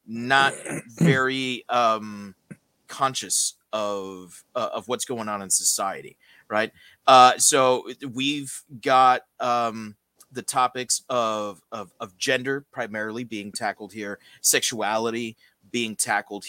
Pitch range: 100-125 Hz